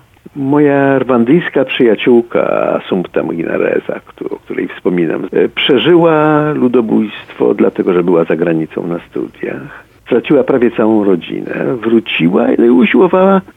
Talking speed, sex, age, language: 105 wpm, male, 50-69, Polish